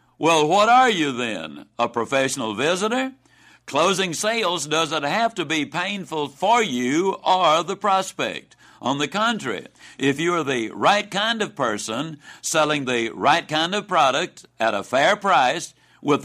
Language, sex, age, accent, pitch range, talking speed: English, male, 60-79, American, 140-190 Hz, 155 wpm